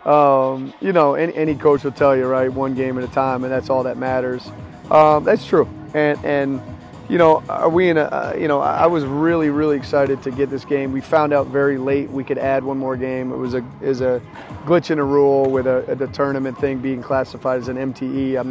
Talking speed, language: 240 wpm, English